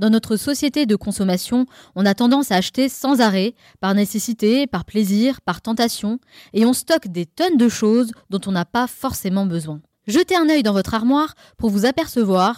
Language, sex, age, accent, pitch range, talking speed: French, female, 20-39, French, 200-275 Hz, 190 wpm